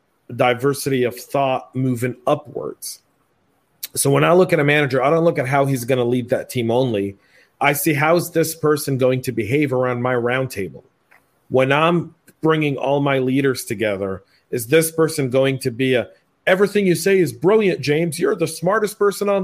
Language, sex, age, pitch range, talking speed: English, male, 40-59, 130-155 Hz, 190 wpm